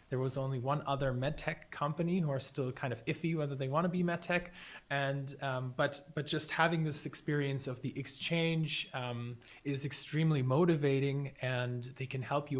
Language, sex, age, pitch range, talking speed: English, male, 20-39, 130-155 Hz, 185 wpm